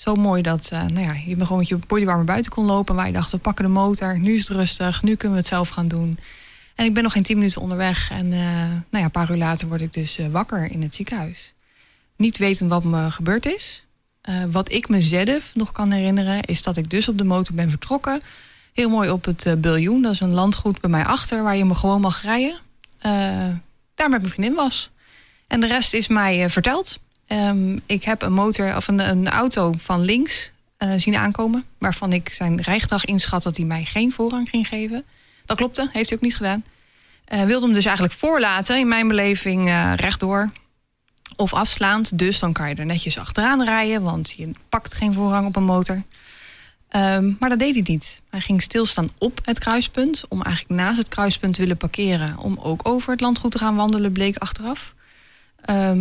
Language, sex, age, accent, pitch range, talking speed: Dutch, female, 20-39, Dutch, 180-220 Hz, 215 wpm